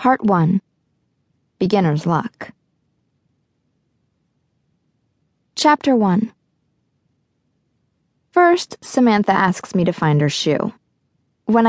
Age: 20-39